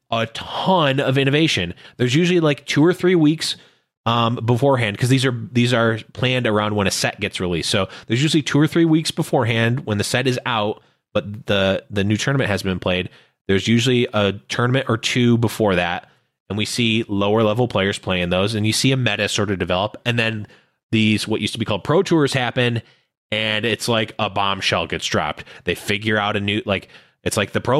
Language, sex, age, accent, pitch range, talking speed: English, male, 20-39, American, 105-135 Hz, 210 wpm